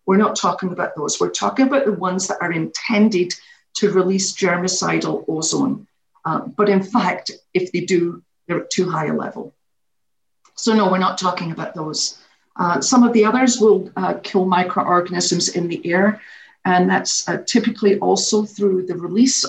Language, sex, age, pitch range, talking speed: English, female, 50-69, 185-215 Hz, 175 wpm